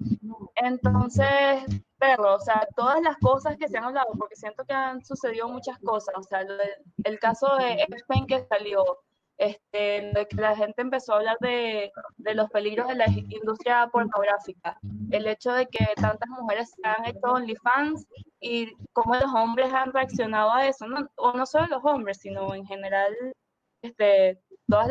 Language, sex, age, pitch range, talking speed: Spanish, female, 20-39, 195-260 Hz, 175 wpm